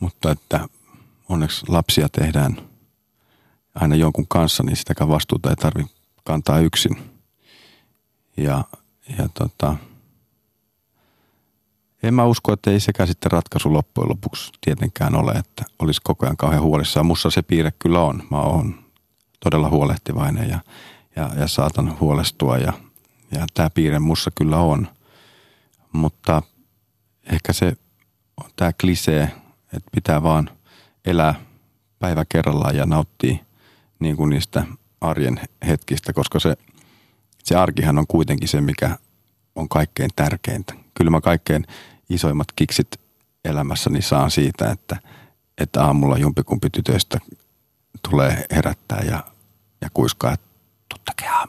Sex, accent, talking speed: male, native, 120 wpm